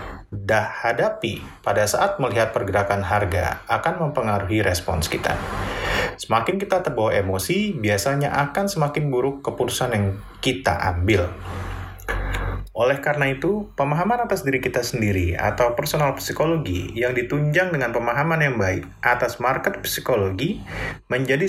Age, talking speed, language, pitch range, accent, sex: 30-49, 120 wpm, Indonesian, 95-140 Hz, native, male